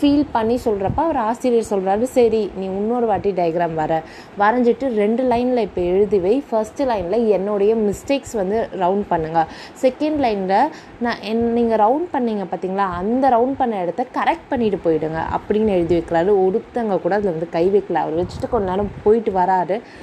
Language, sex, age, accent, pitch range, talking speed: Tamil, female, 20-39, native, 190-240 Hz, 160 wpm